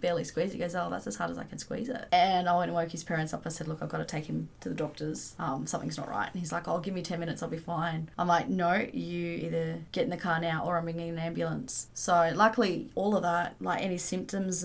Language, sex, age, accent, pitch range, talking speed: English, female, 20-39, Australian, 170-205 Hz, 285 wpm